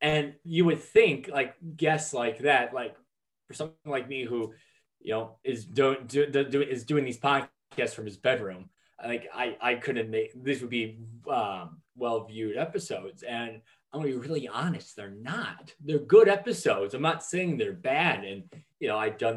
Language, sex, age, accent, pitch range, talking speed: English, male, 20-39, American, 110-150 Hz, 185 wpm